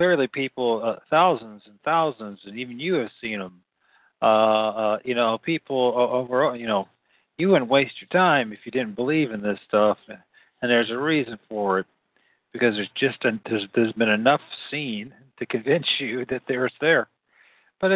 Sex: male